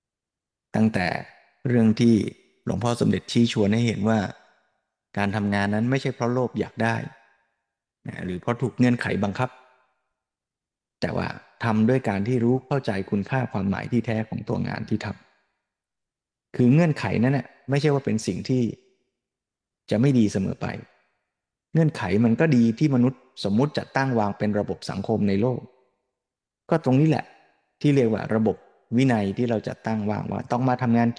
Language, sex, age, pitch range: Thai, male, 20-39, 105-130 Hz